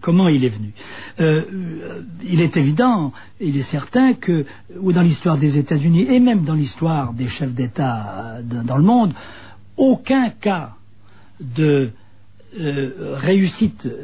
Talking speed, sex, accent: 140 wpm, male, French